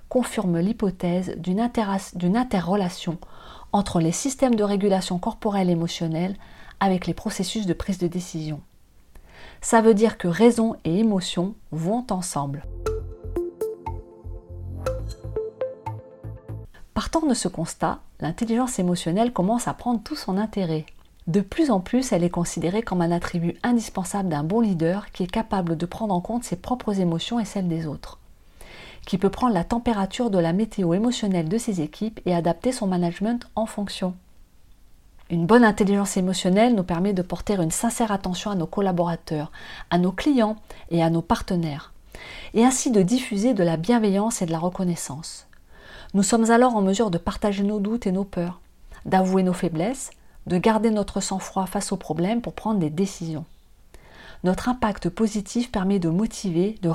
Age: 30-49